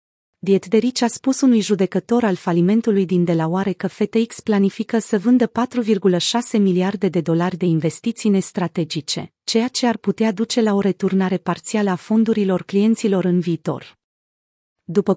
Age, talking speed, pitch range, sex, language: 30-49, 150 wpm, 180-225 Hz, female, Romanian